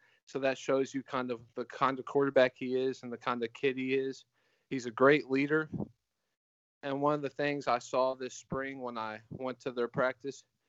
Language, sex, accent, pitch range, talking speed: English, male, American, 120-135 Hz, 215 wpm